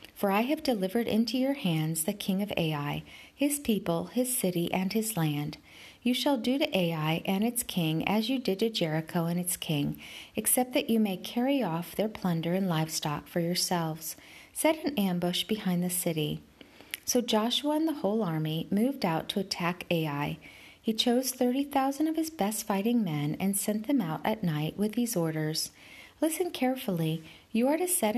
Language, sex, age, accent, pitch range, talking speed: English, female, 40-59, American, 170-240 Hz, 185 wpm